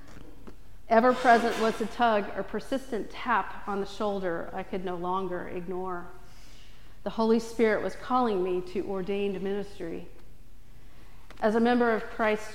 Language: English